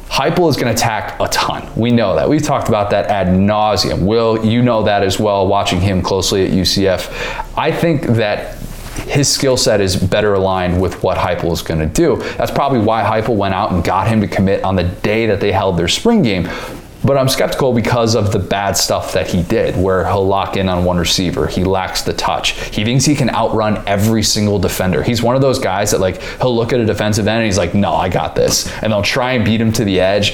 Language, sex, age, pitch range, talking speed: English, male, 20-39, 100-125 Hz, 240 wpm